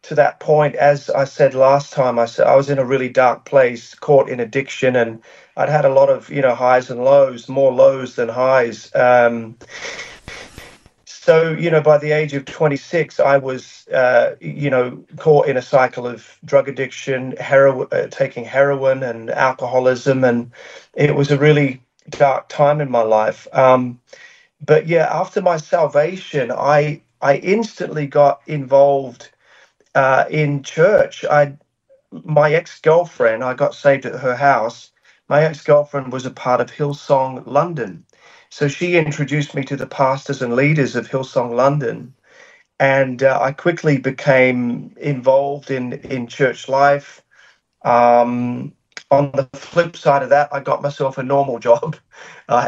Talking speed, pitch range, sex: 155 wpm, 130-150 Hz, male